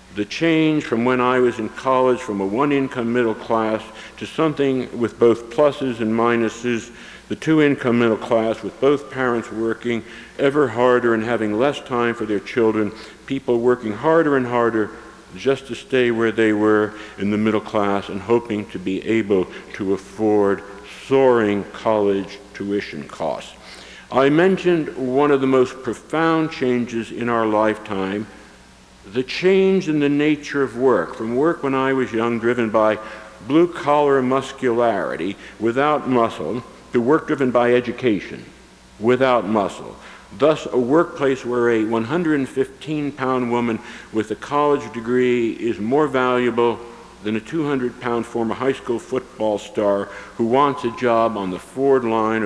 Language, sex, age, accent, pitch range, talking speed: English, male, 60-79, American, 105-130 Hz, 150 wpm